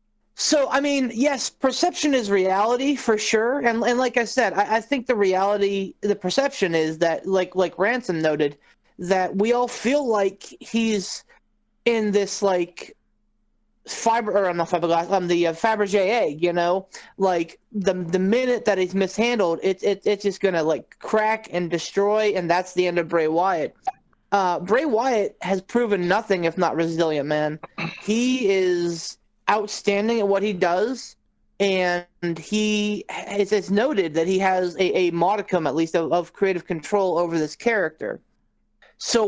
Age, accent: 30-49, American